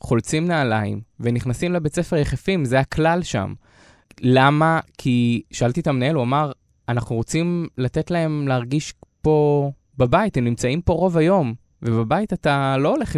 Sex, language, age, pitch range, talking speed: male, Hebrew, 20-39, 125-165 Hz, 145 wpm